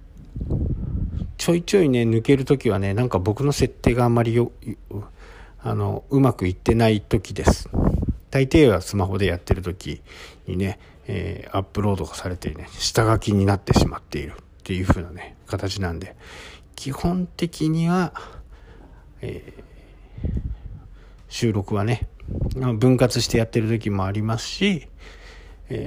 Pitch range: 85-110 Hz